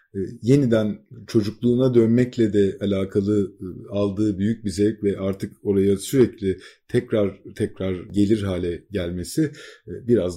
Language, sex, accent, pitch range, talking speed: Turkish, male, native, 100-140 Hz, 125 wpm